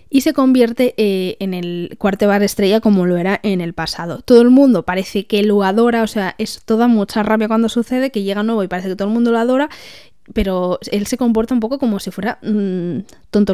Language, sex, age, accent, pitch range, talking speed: Spanish, female, 20-39, Spanish, 195-240 Hz, 225 wpm